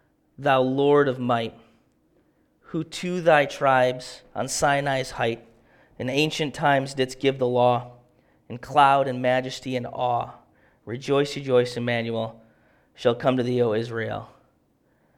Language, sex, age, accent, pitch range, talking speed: English, male, 30-49, American, 125-150 Hz, 130 wpm